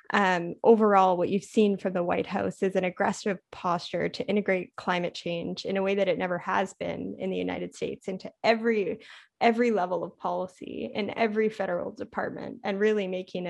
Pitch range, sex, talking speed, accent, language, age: 180-210 Hz, female, 185 wpm, American, English, 10-29